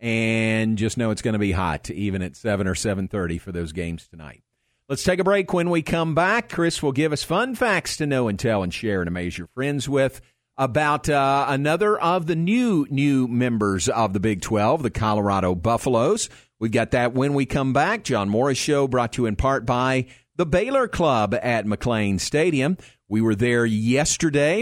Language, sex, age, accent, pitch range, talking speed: English, male, 50-69, American, 110-145 Hz, 200 wpm